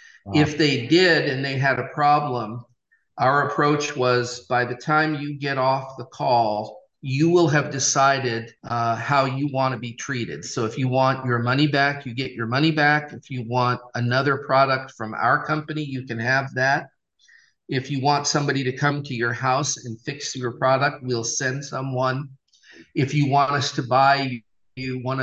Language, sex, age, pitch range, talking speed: English, male, 40-59, 120-140 Hz, 185 wpm